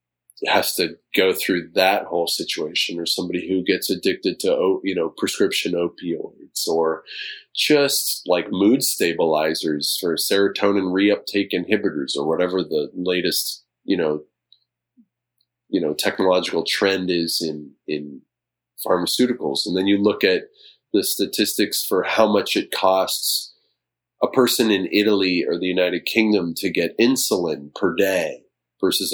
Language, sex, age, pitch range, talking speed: English, male, 30-49, 80-120 Hz, 135 wpm